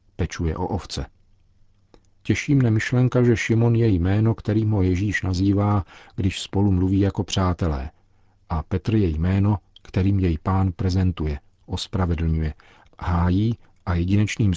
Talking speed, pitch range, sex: 125 wpm, 90-100 Hz, male